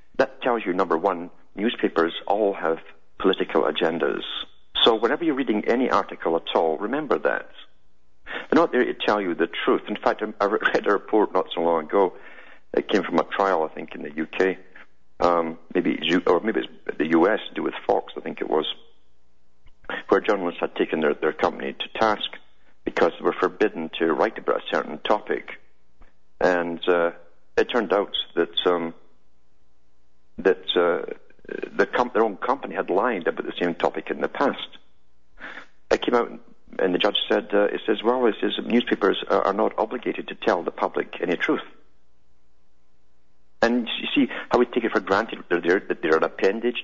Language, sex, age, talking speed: English, male, 50-69, 185 wpm